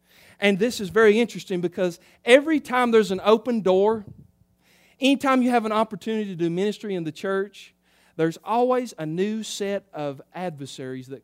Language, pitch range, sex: English, 170-225 Hz, male